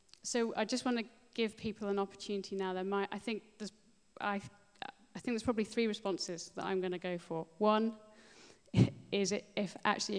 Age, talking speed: 30-49, 195 wpm